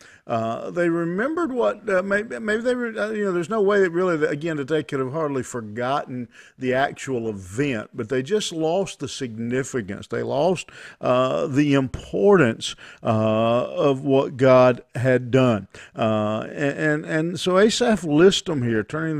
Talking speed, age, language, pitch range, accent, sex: 165 wpm, 50-69, English, 125-160 Hz, American, male